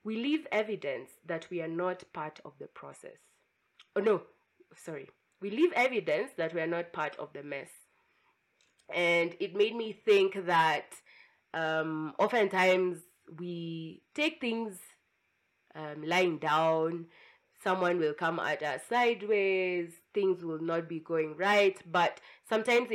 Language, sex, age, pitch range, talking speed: English, female, 20-39, 165-215 Hz, 140 wpm